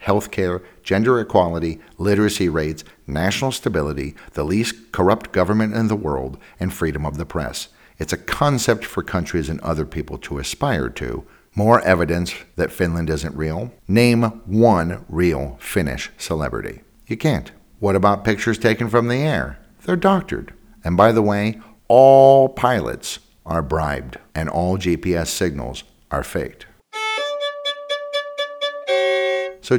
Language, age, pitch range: English, 60-79, 80-120 Hz